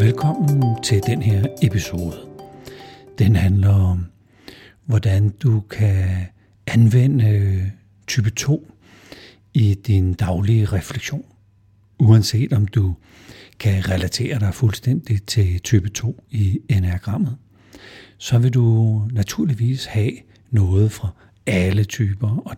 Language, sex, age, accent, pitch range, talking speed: Danish, male, 60-79, native, 95-115 Hz, 105 wpm